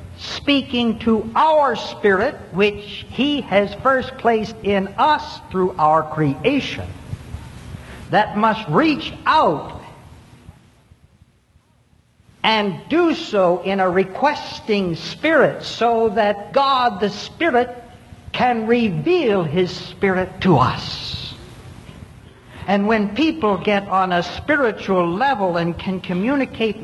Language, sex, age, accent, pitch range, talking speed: English, male, 60-79, American, 185-245 Hz, 105 wpm